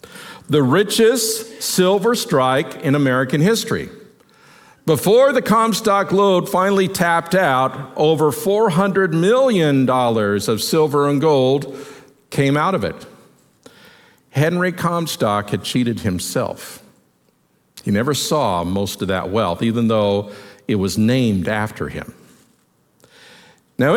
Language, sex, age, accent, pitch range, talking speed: English, male, 50-69, American, 125-185 Hz, 115 wpm